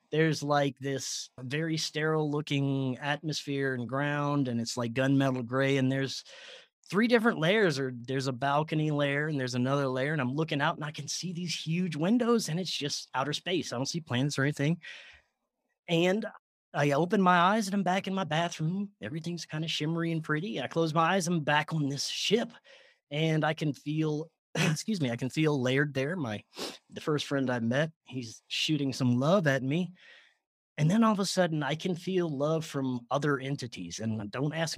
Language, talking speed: English, 200 wpm